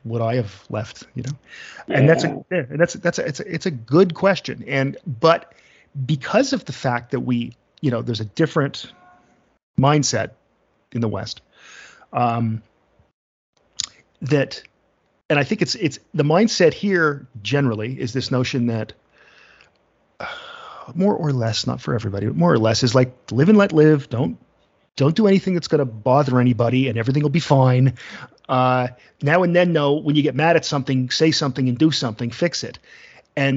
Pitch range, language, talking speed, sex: 120-155 Hz, English, 180 wpm, male